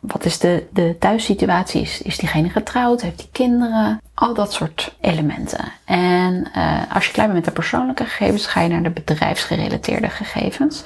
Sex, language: female, Dutch